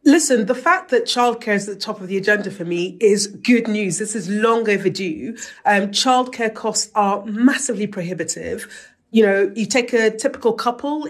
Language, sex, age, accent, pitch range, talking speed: English, female, 30-49, British, 200-250 Hz, 185 wpm